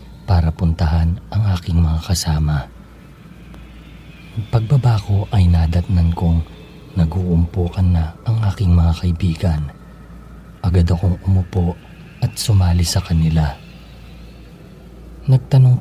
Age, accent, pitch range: 40-59, native, 85-100 Hz